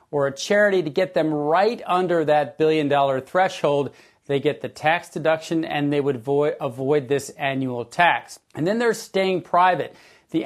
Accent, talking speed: American, 170 wpm